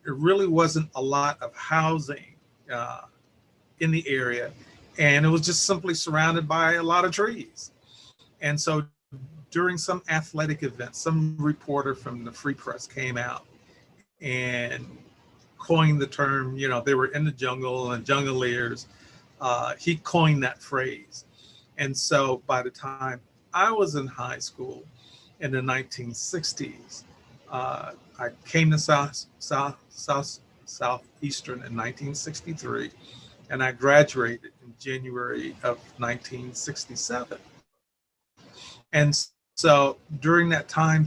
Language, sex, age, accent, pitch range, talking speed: English, male, 40-59, American, 125-155 Hz, 125 wpm